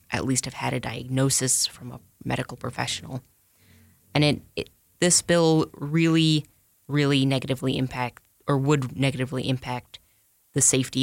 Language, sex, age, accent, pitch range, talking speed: English, female, 20-39, American, 125-140 Hz, 135 wpm